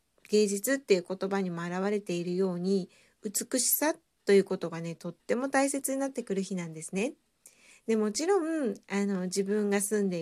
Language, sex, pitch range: Japanese, female, 185-255 Hz